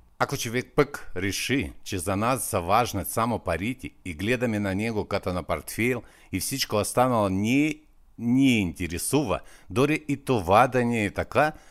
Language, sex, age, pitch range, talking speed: Bulgarian, male, 50-69, 85-120 Hz, 155 wpm